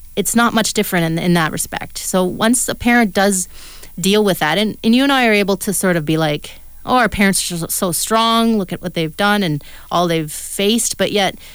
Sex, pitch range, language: female, 160-200 Hz, English